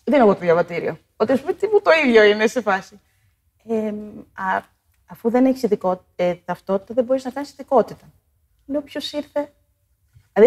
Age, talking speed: 30-49, 170 wpm